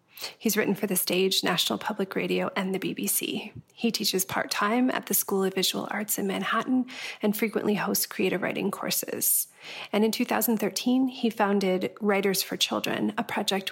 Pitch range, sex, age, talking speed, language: 190-225 Hz, female, 30-49, 165 wpm, English